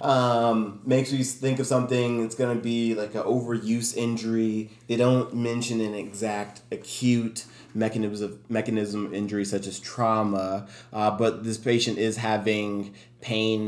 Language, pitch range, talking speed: English, 100-115 Hz, 155 wpm